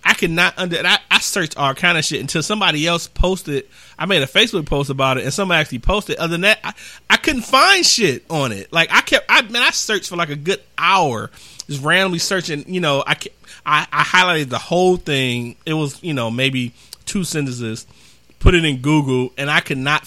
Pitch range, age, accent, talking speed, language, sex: 130-185 Hz, 30-49, American, 225 wpm, English, male